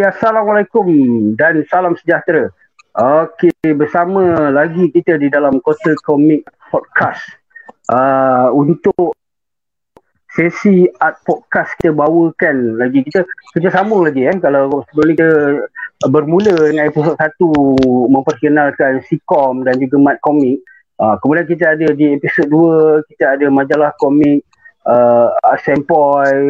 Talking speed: 120 wpm